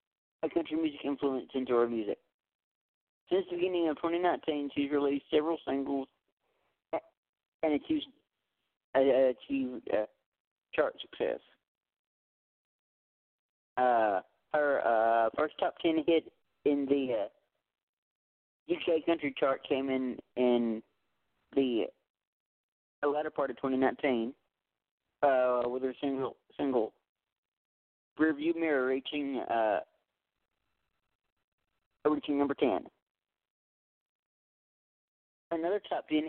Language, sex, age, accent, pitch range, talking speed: English, male, 40-59, American, 120-155 Hz, 100 wpm